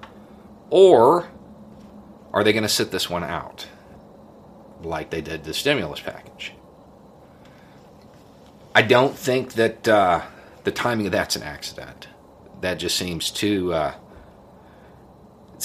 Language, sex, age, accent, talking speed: English, male, 40-59, American, 120 wpm